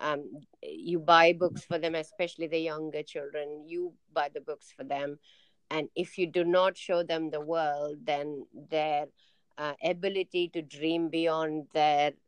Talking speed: 160 wpm